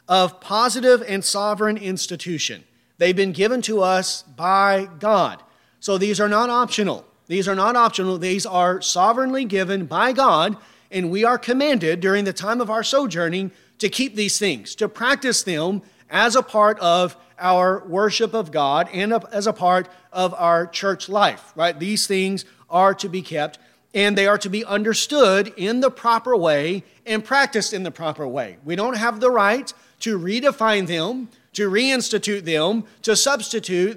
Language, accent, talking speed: English, American, 170 wpm